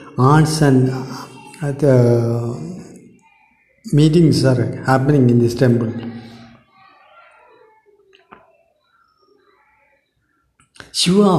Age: 60-79